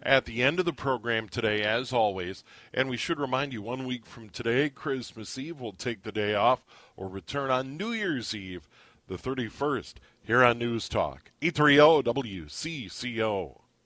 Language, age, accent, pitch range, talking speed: English, 40-59, American, 120-155 Hz, 165 wpm